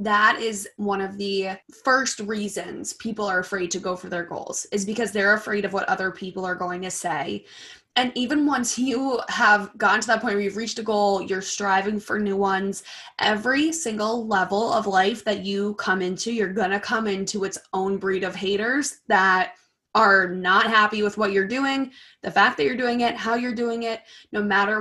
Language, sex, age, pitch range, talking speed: English, female, 20-39, 195-235 Hz, 205 wpm